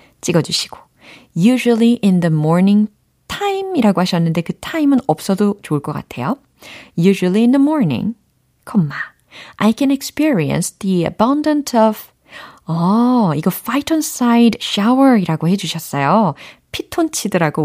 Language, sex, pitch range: Korean, female, 155-230 Hz